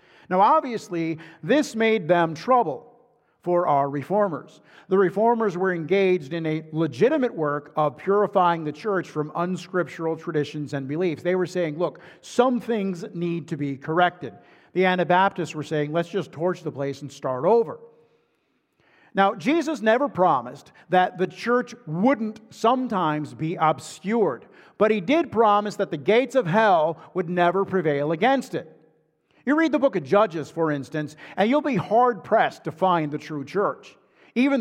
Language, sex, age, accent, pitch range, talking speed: English, male, 50-69, American, 155-220 Hz, 160 wpm